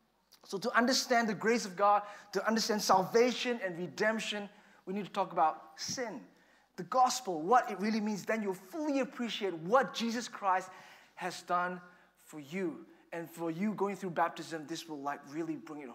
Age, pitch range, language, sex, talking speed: 20-39, 165-210 Hz, English, male, 175 wpm